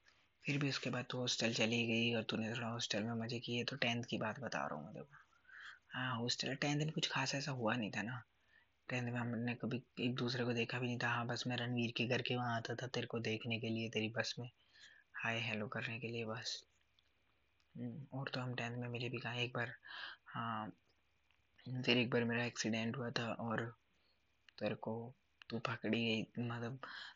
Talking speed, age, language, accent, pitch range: 215 wpm, 20-39, Hindi, native, 115-125 Hz